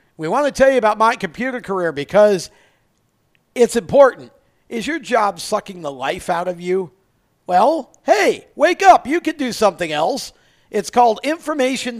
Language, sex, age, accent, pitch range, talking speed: English, male, 50-69, American, 180-245 Hz, 160 wpm